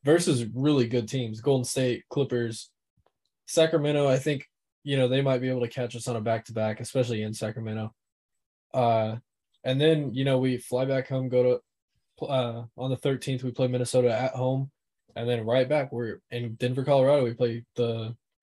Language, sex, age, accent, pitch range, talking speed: English, male, 10-29, American, 115-135 Hz, 180 wpm